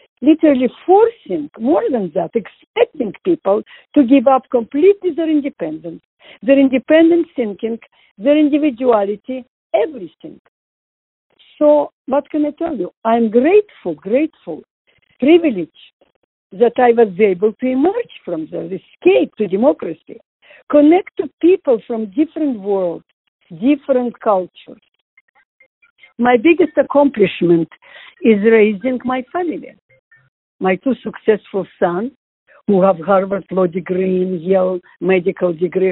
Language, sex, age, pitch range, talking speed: English, female, 60-79, 215-300 Hz, 110 wpm